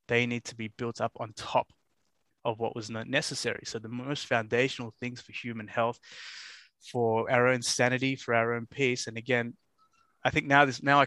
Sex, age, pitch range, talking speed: male, 20-39, 110-125 Hz, 200 wpm